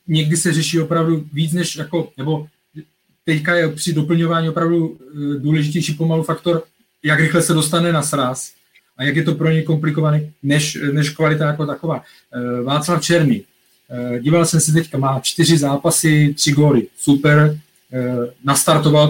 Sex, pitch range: male, 140-165 Hz